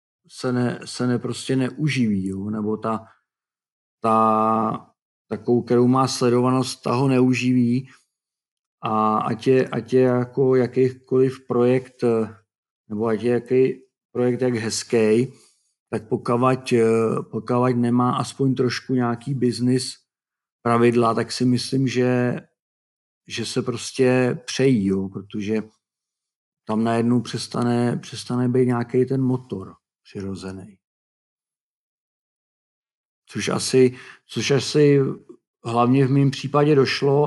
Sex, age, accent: male, 50-69, native